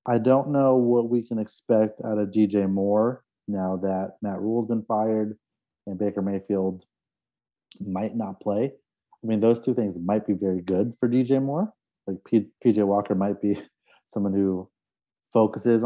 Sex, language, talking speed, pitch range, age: male, English, 165 wpm, 95-115 Hz, 30-49